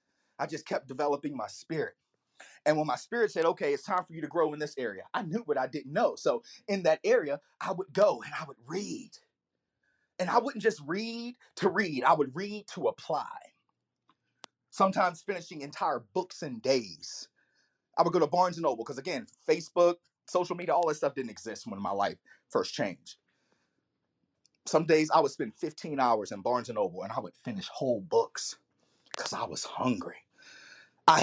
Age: 30-49